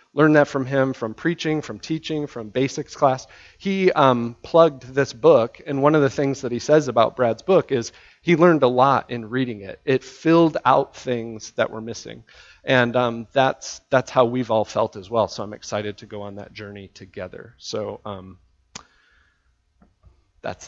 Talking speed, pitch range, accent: 185 wpm, 110-150 Hz, American